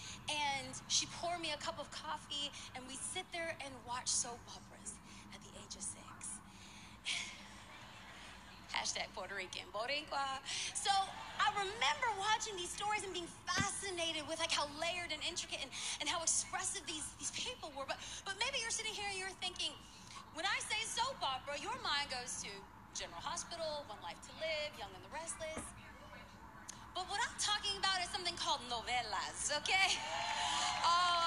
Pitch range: 310-420 Hz